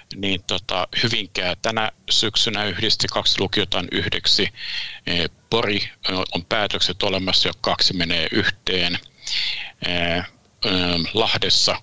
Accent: native